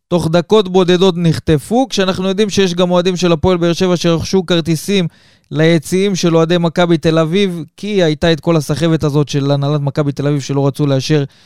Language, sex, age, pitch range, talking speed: Hebrew, male, 20-39, 145-185 Hz, 185 wpm